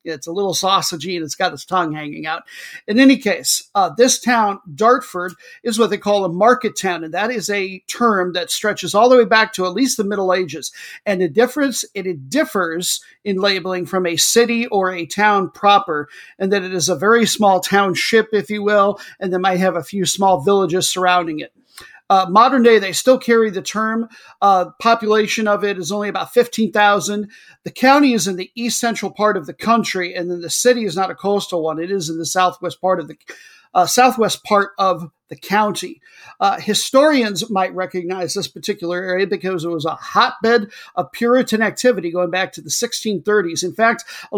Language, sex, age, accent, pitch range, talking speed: English, male, 50-69, American, 180-225 Hz, 205 wpm